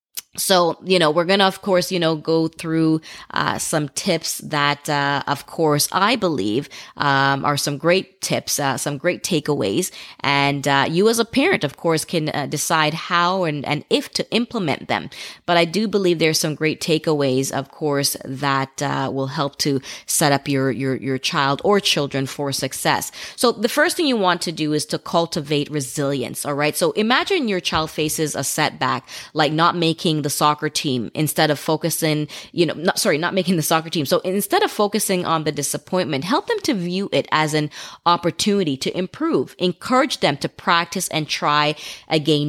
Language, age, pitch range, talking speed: English, 20-39, 145-185 Hz, 190 wpm